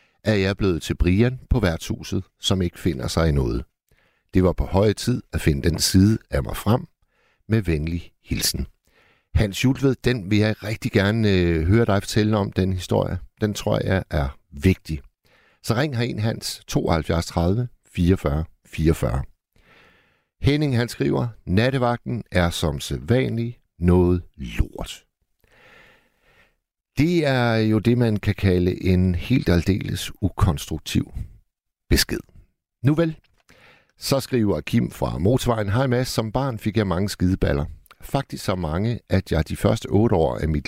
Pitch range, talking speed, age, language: 85-115 Hz, 150 wpm, 60-79, Danish